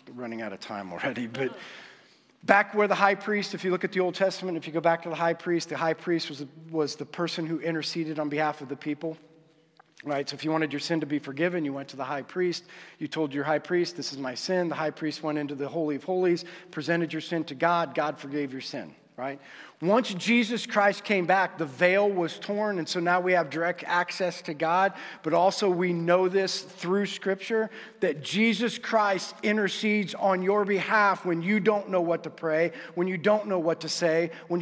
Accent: American